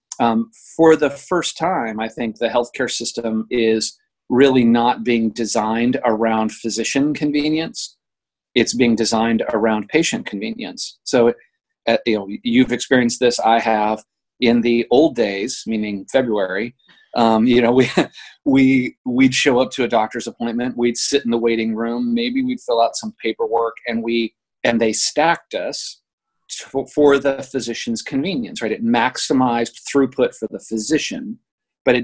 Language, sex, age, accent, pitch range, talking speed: English, male, 40-59, American, 115-150 Hz, 155 wpm